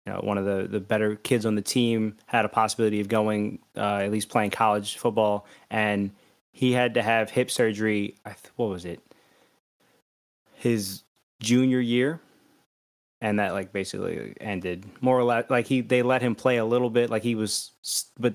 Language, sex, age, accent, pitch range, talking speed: English, male, 20-39, American, 105-120 Hz, 190 wpm